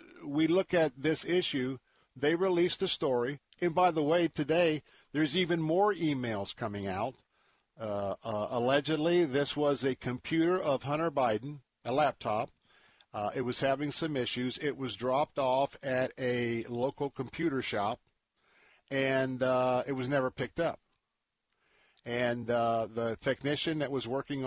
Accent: American